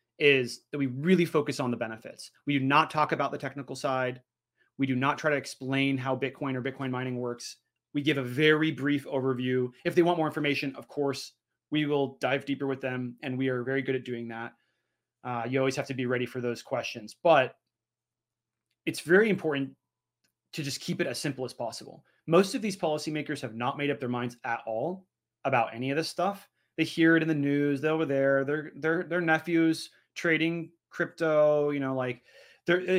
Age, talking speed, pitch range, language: 30-49, 205 wpm, 125-155 Hz, English